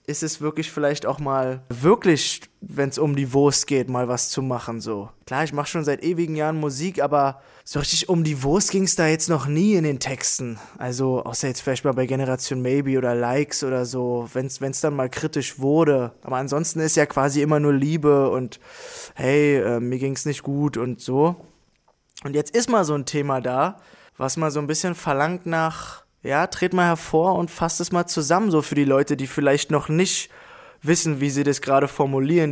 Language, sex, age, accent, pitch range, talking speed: German, male, 20-39, German, 130-155 Hz, 210 wpm